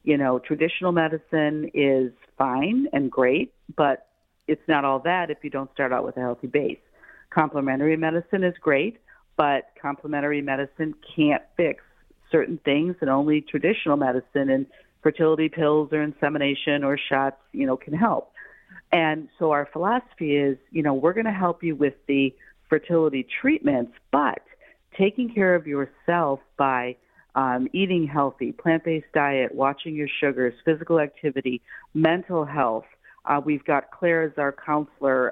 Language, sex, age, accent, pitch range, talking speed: English, female, 50-69, American, 135-160 Hz, 150 wpm